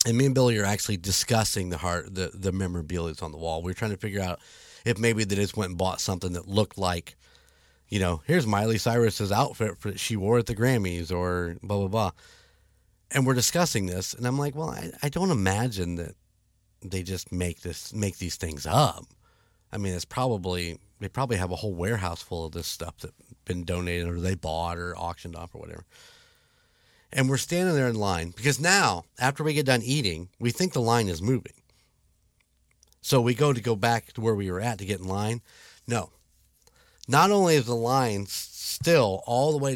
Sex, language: male, English